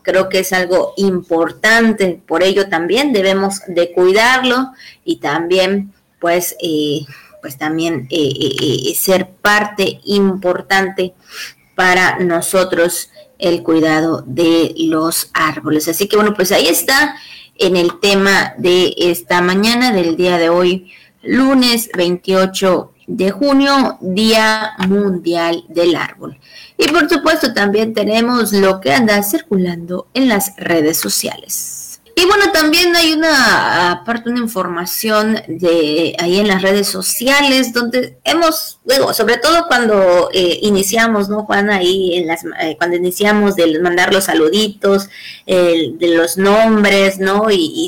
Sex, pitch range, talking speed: female, 175-215 Hz, 135 wpm